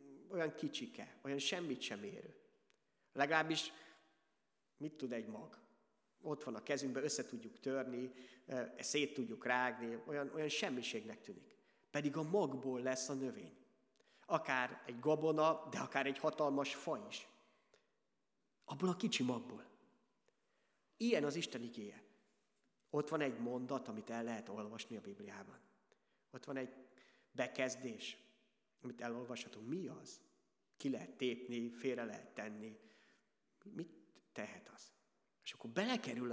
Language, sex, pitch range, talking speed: Hungarian, male, 125-160 Hz, 130 wpm